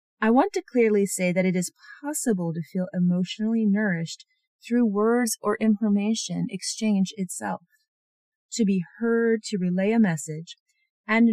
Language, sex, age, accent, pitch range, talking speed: English, female, 30-49, American, 185-235 Hz, 145 wpm